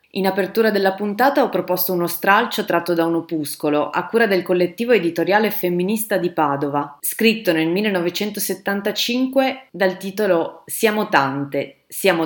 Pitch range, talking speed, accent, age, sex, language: 160-205 Hz, 135 wpm, native, 30-49, female, Italian